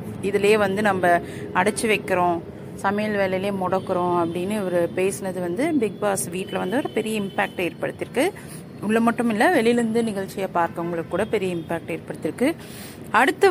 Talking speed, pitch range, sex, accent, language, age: 135 wpm, 170-215 Hz, female, native, Tamil, 30-49